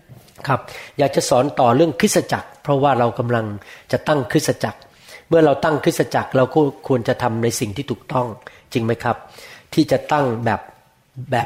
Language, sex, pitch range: Thai, male, 115-145 Hz